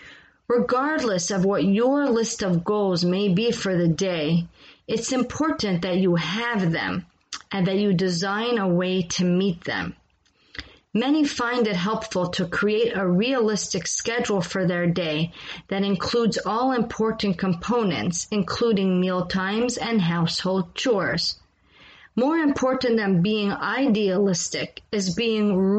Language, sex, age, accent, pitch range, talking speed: English, female, 30-49, American, 185-235 Hz, 135 wpm